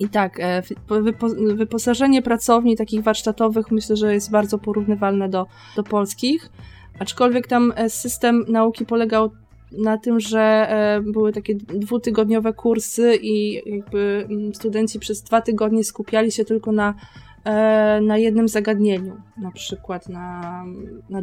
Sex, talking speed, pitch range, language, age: female, 120 wpm, 195-225 Hz, Polish, 20-39